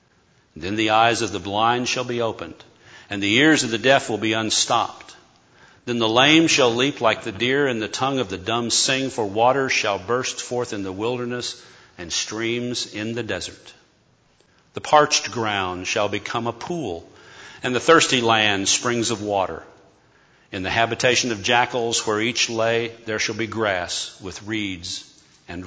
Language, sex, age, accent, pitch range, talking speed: English, male, 50-69, American, 105-125 Hz, 175 wpm